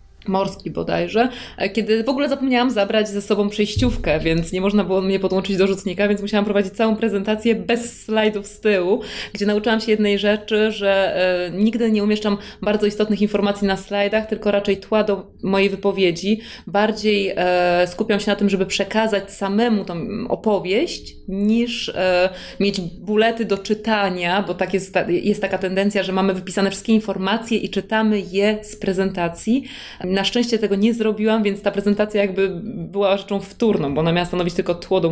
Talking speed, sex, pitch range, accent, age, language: 165 wpm, female, 185-210 Hz, Polish, 20-39, English